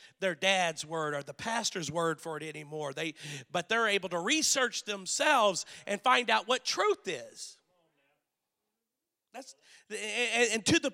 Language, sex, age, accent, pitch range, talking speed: English, male, 50-69, American, 170-240 Hz, 150 wpm